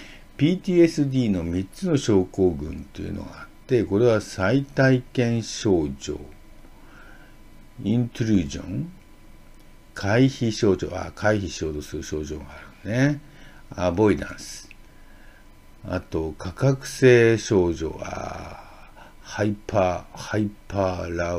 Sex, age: male, 60-79